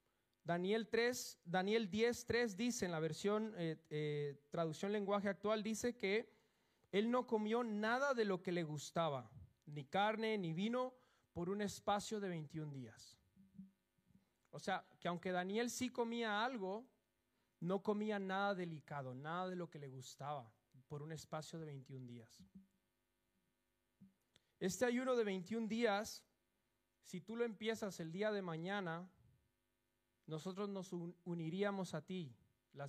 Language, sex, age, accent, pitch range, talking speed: Spanish, male, 40-59, Mexican, 135-205 Hz, 140 wpm